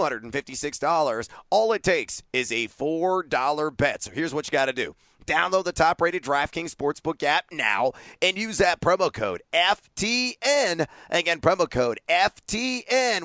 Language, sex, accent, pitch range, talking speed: English, male, American, 135-190 Hz, 145 wpm